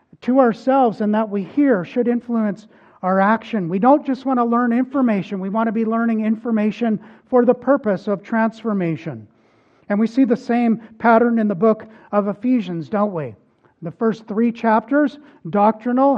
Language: English